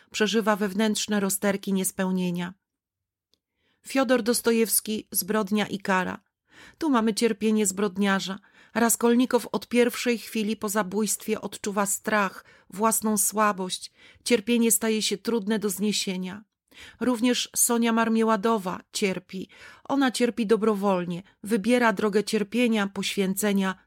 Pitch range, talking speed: 195-230 Hz, 100 wpm